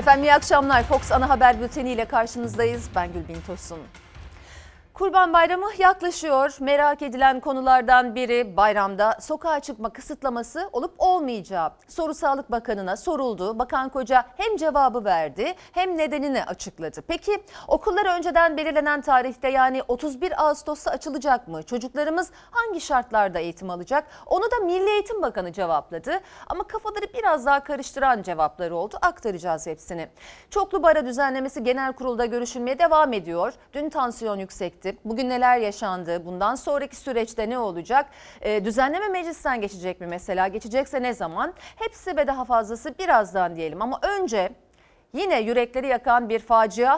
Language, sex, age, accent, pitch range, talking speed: Turkish, female, 40-59, native, 220-310 Hz, 140 wpm